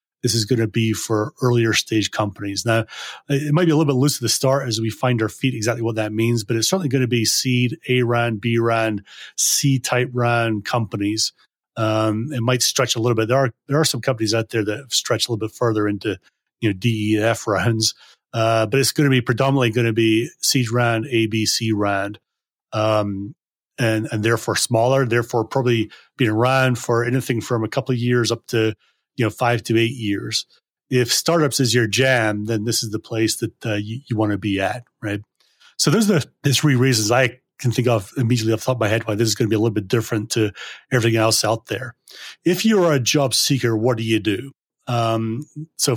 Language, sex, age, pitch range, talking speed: English, male, 30-49, 110-130 Hz, 225 wpm